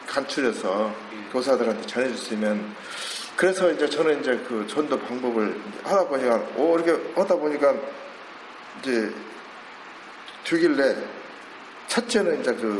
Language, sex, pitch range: Korean, male, 145-205 Hz